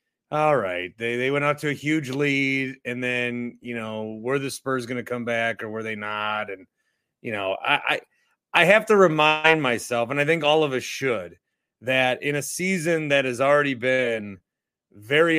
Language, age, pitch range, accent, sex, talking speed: English, 30-49, 125-180 Hz, American, male, 195 wpm